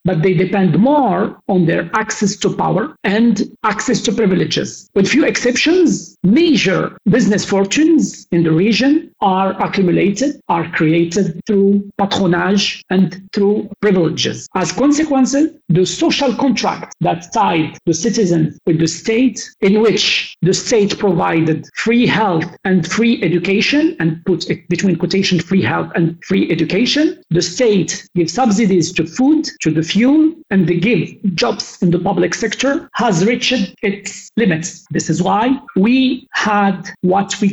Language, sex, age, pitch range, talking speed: English, male, 50-69, 180-225 Hz, 145 wpm